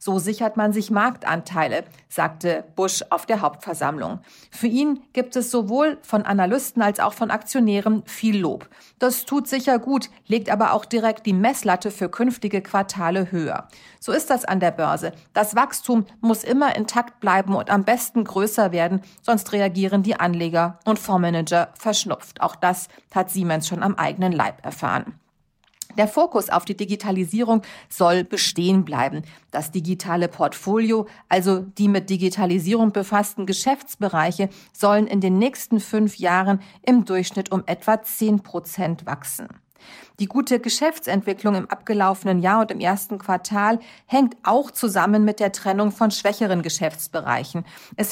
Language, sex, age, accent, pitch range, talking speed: German, female, 40-59, German, 185-225 Hz, 150 wpm